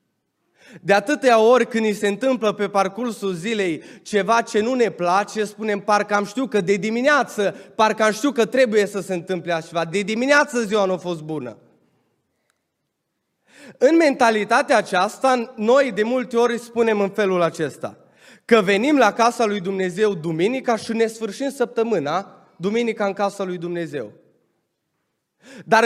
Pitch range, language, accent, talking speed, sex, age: 195-240 Hz, Romanian, native, 155 wpm, male, 20-39